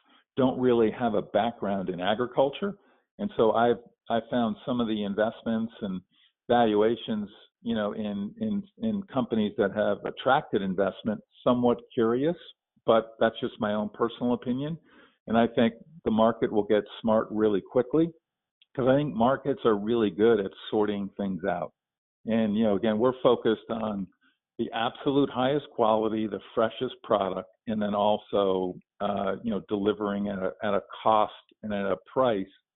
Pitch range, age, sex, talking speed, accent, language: 105-130 Hz, 50-69, male, 160 wpm, American, English